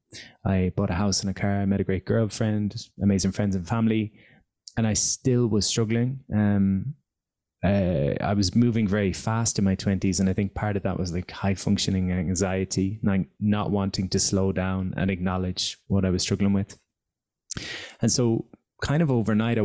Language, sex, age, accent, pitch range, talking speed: English, male, 20-39, Irish, 100-110 Hz, 185 wpm